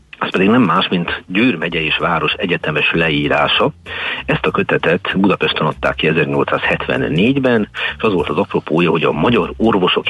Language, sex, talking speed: Hungarian, male, 160 wpm